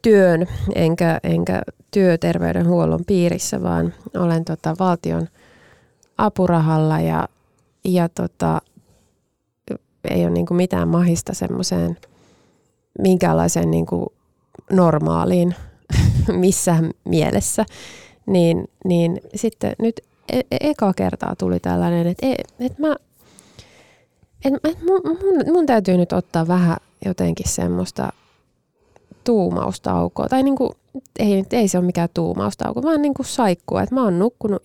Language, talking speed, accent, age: Finnish, 115 wpm, native, 20-39